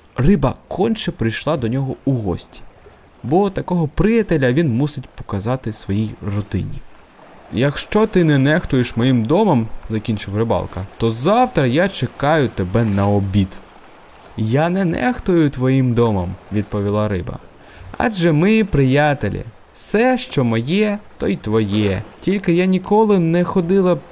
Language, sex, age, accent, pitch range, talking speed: Ukrainian, male, 20-39, native, 105-175 Hz, 135 wpm